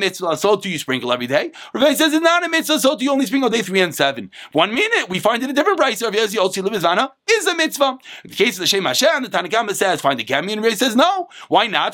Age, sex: 30-49, male